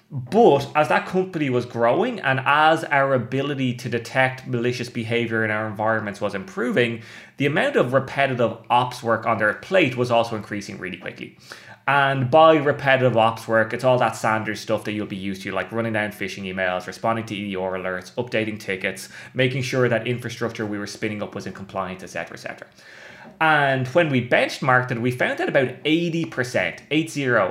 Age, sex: 20-39, male